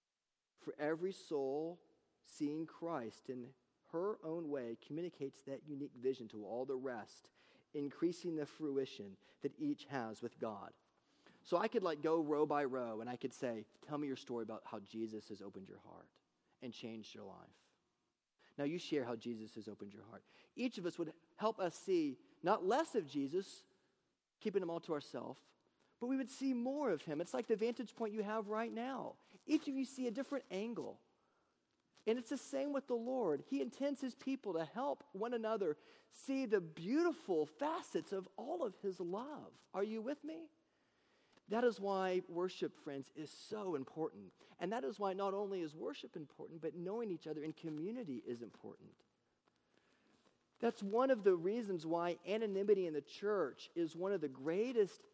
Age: 30-49